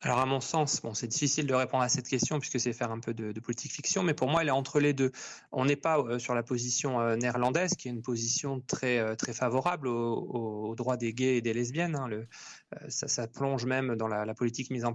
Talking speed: 255 wpm